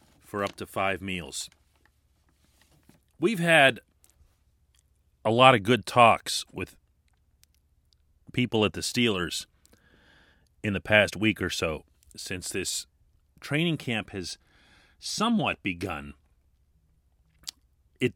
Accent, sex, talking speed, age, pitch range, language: American, male, 100 wpm, 40-59, 80-115 Hz, English